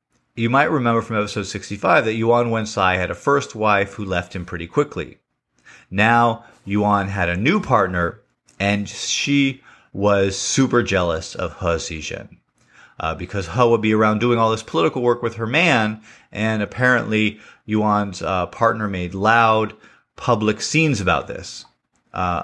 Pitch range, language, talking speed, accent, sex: 95-120 Hz, English, 155 wpm, American, male